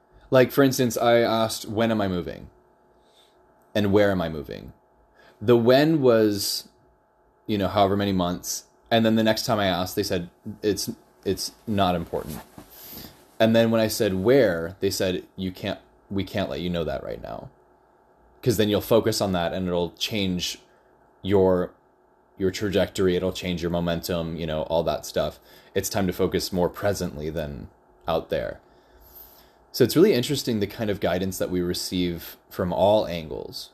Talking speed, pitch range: 175 wpm, 90-110 Hz